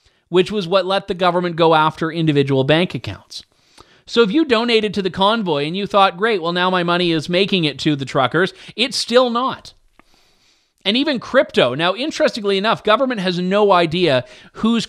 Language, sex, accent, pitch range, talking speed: English, male, American, 150-215 Hz, 185 wpm